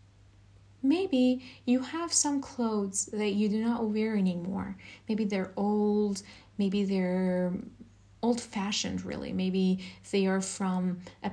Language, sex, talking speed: English, female, 125 wpm